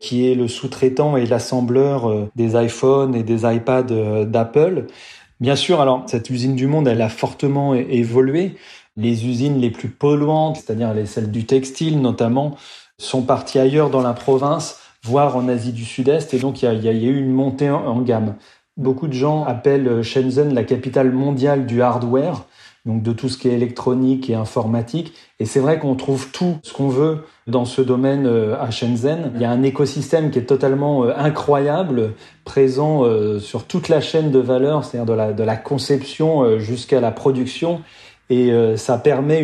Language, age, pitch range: French, 30-49, 120-145 Hz